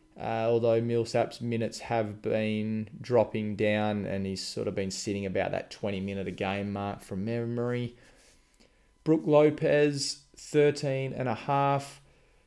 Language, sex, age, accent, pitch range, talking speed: English, male, 20-39, Australian, 100-120 Hz, 110 wpm